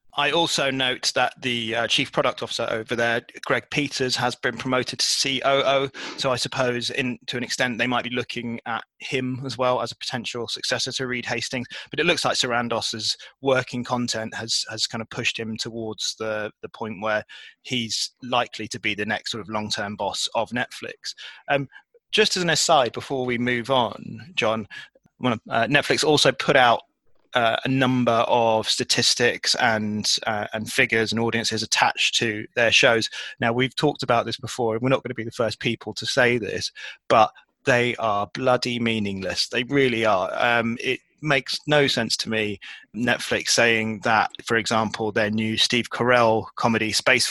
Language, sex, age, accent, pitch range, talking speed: English, male, 20-39, British, 110-130 Hz, 185 wpm